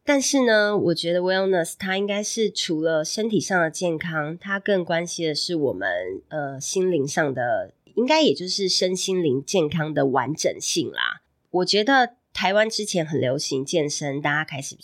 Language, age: Chinese, 30-49